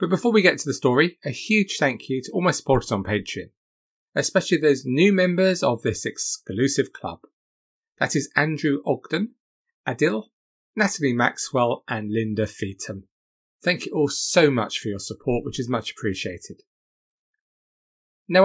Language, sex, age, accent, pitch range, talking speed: English, male, 30-49, British, 115-170 Hz, 155 wpm